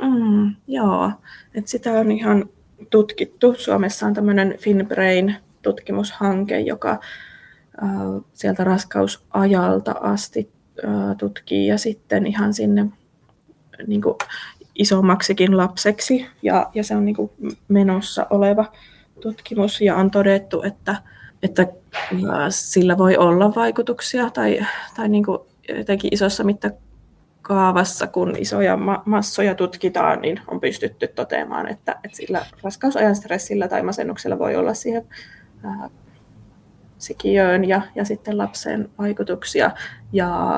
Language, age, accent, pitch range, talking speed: Finnish, 20-39, native, 180-210 Hz, 110 wpm